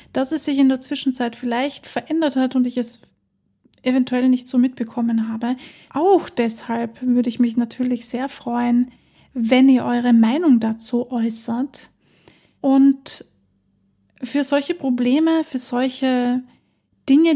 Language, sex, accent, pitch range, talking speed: German, female, German, 240-275 Hz, 130 wpm